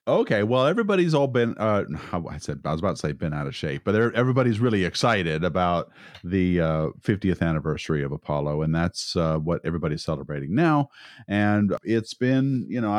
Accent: American